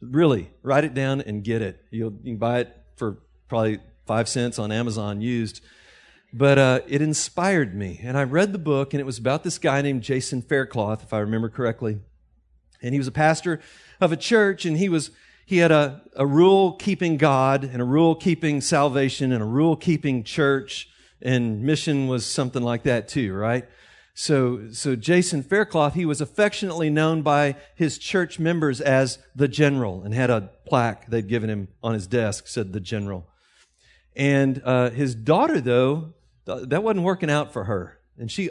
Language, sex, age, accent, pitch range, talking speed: English, male, 40-59, American, 120-155 Hz, 185 wpm